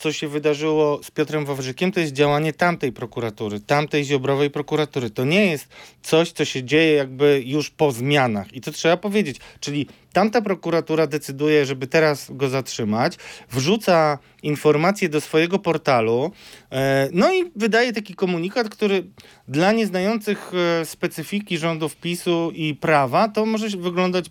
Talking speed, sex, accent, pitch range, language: 145 wpm, male, native, 145-185 Hz, Polish